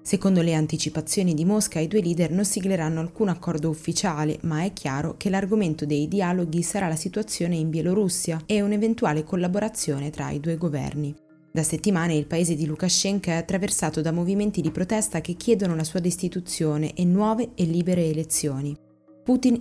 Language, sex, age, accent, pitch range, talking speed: Italian, female, 20-39, native, 155-200 Hz, 170 wpm